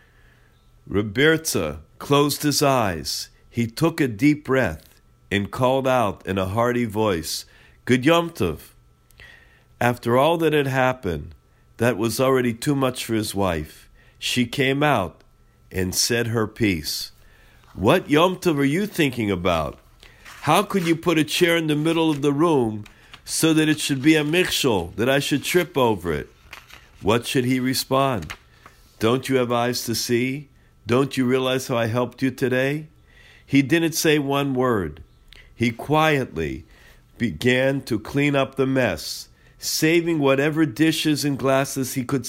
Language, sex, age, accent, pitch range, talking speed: English, male, 50-69, American, 105-145 Hz, 155 wpm